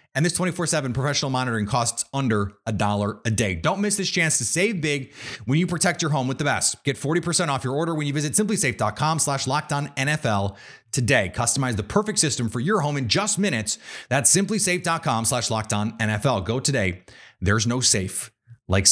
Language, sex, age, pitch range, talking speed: English, male, 30-49, 110-160 Hz, 170 wpm